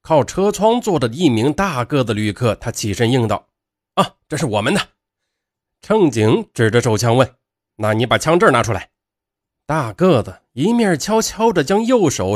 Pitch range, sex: 105-155 Hz, male